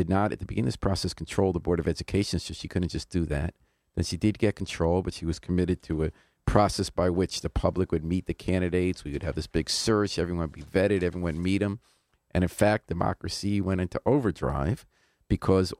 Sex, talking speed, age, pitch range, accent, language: male, 230 wpm, 50-69, 80-100 Hz, American, English